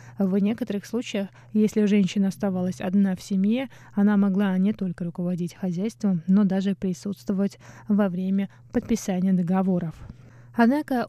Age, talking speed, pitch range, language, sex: 20-39, 125 wpm, 175-215 Hz, Russian, female